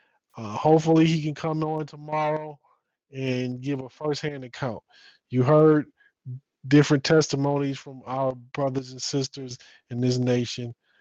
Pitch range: 125-155 Hz